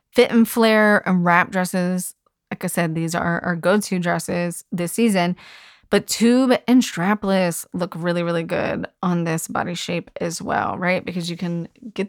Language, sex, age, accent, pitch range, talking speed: English, female, 20-39, American, 170-210 Hz, 175 wpm